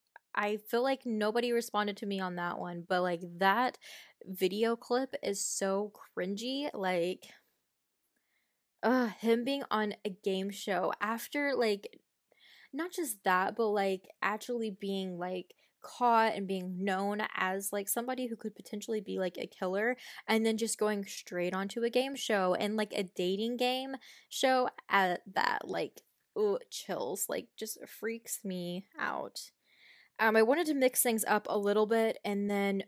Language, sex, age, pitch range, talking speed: English, female, 10-29, 195-230 Hz, 155 wpm